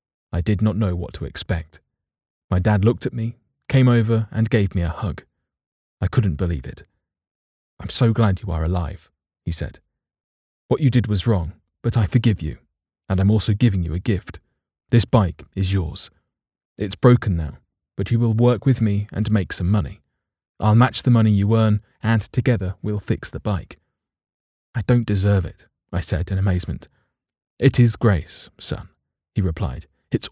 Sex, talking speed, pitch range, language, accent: male, 180 wpm, 85-115 Hz, English, British